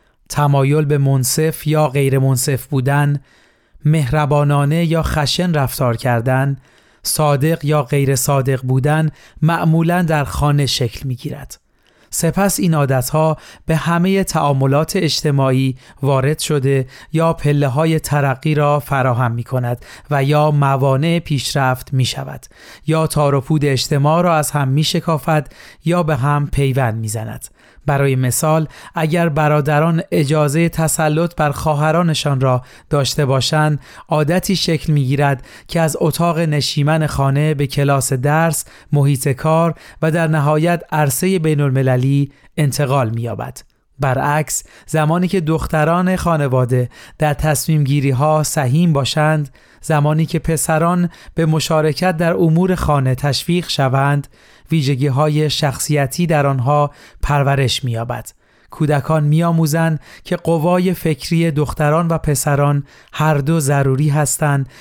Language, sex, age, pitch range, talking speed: Persian, male, 30-49, 140-160 Hz, 125 wpm